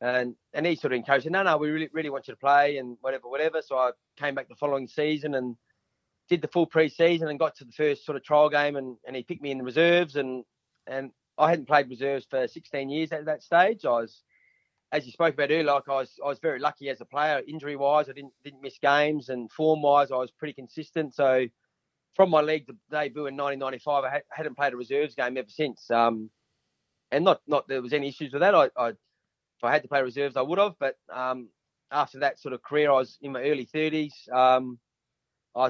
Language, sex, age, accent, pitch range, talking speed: English, male, 30-49, Australian, 125-150 Hz, 240 wpm